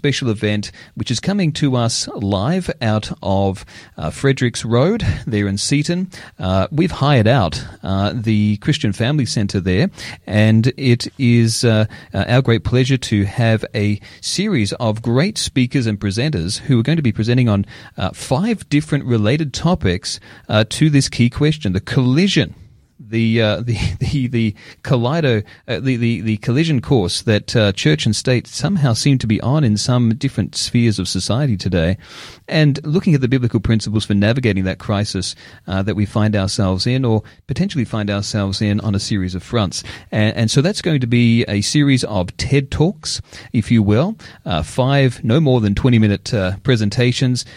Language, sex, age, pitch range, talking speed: English, male, 40-59, 105-135 Hz, 180 wpm